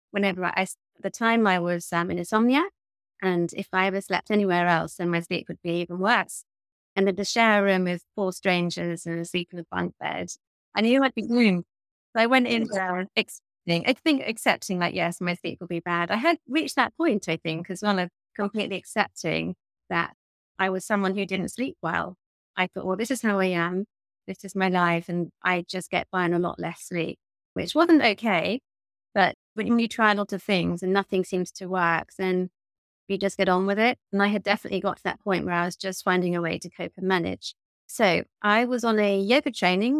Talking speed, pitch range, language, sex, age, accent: 225 wpm, 175-215 Hz, English, female, 30-49, British